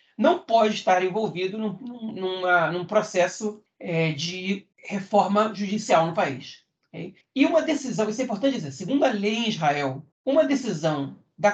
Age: 40-59